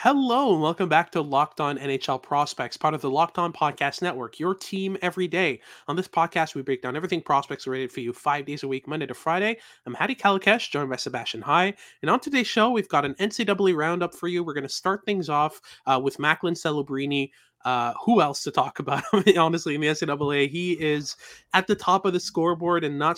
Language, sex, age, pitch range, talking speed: English, male, 20-39, 140-185 Hz, 225 wpm